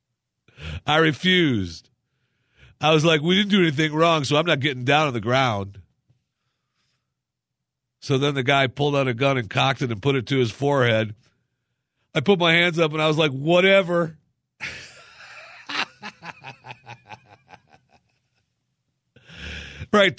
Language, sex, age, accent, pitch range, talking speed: English, male, 50-69, American, 115-145 Hz, 135 wpm